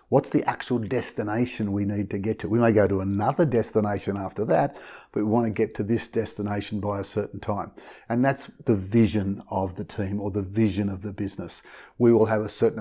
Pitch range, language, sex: 100-120 Hz, English, male